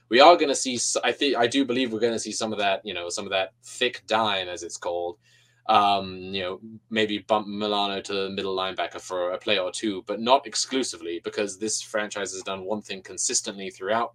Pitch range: 100-120 Hz